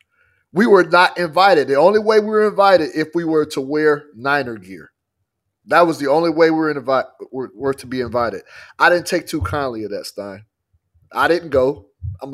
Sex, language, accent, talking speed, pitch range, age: male, English, American, 195 wpm, 125-175 Hz, 30-49